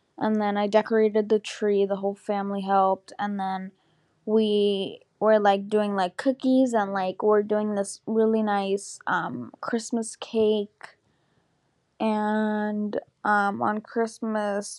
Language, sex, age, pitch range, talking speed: English, female, 10-29, 195-220 Hz, 130 wpm